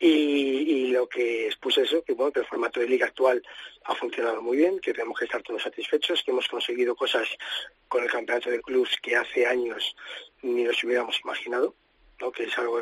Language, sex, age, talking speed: Spanish, male, 30-49, 205 wpm